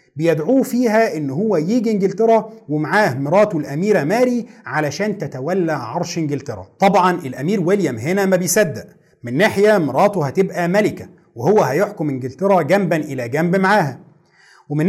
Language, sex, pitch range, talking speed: Arabic, male, 150-205 Hz, 135 wpm